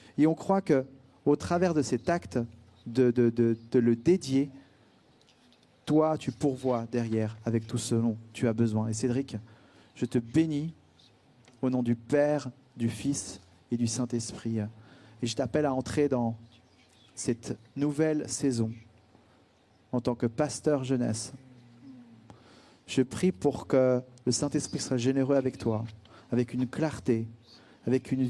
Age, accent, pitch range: 40-59, French, 115-140 Hz